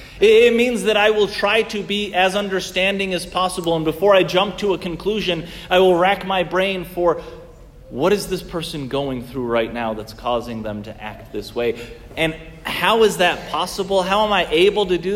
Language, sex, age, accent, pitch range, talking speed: English, male, 30-49, American, 125-185 Hz, 200 wpm